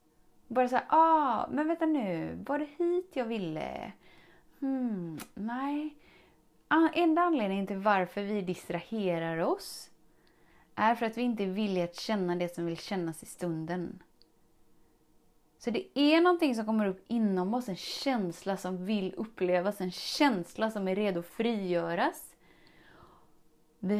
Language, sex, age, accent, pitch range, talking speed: Swedish, female, 20-39, native, 180-255 Hz, 140 wpm